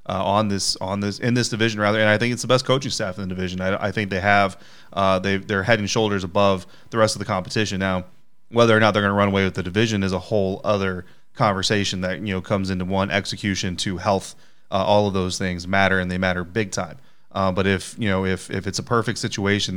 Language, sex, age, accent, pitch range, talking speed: English, male, 30-49, American, 95-105 Hz, 260 wpm